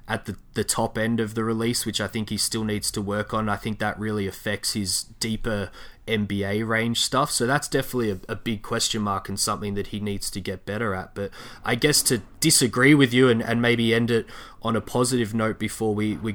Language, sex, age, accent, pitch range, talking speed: English, male, 20-39, Australian, 105-120 Hz, 230 wpm